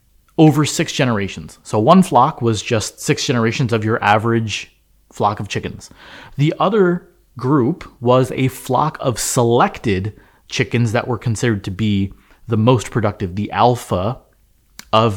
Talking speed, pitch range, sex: 140 wpm, 105-135 Hz, male